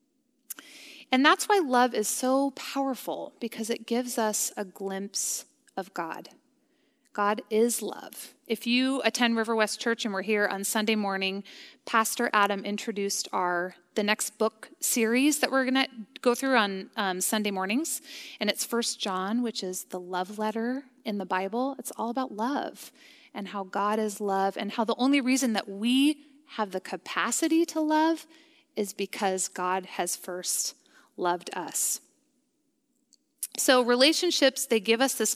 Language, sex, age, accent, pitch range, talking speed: English, female, 30-49, American, 200-270 Hz, 160 wpm